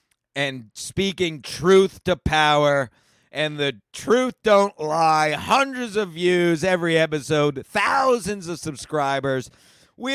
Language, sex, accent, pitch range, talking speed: English, male, American, 125-180 Hz, 110 wpm